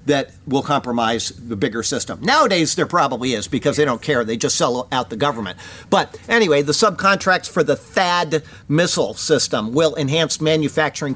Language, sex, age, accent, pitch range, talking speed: English, male, 50-69, American, 130-160 Hz, 170 wpm